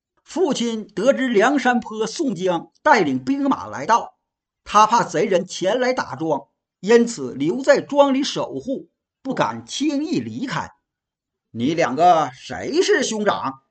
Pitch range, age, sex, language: 170-280 Hz, 50-69, male, Chinese